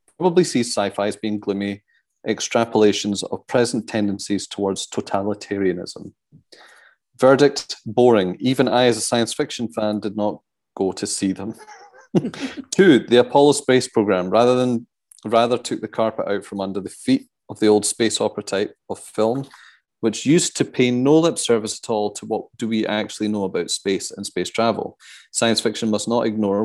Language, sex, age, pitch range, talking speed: English, male, 30-49, 100-120 Hz, 170 wpm